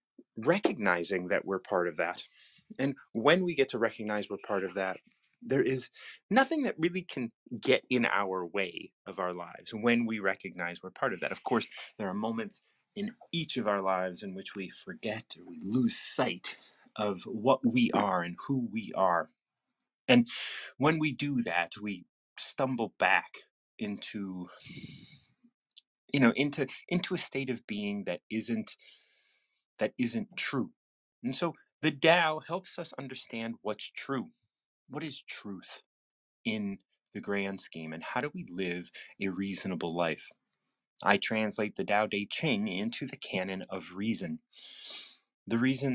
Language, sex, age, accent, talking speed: English, male, 30-49, American, 160 wpm